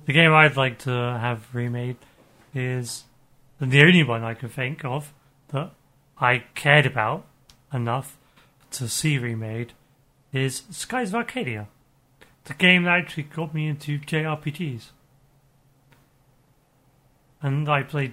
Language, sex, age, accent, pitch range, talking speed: English, male, 40-59, British, 125-150 Hz, 125 wpm